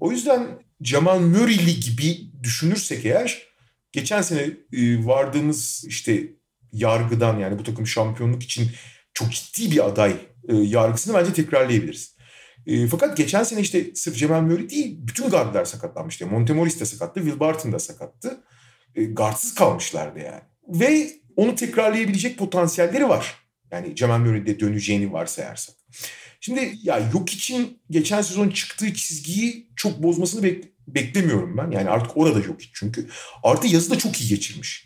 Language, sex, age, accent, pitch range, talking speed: Turkish, male, 40-59, native, 120-190 Hz, 135 wpm